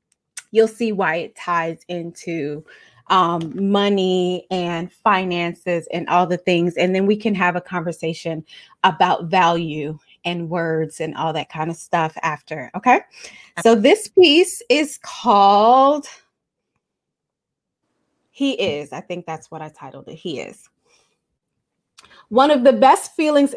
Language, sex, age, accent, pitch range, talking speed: English, female, 30-49, American, 180-245 Hz, 135 wpm